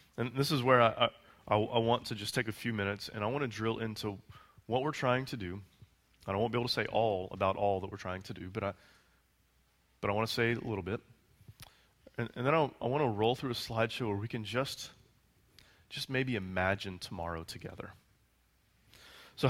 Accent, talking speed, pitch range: American, 220 wpm, 105-125 Hz